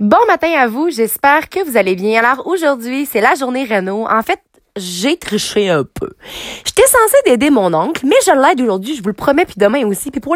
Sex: female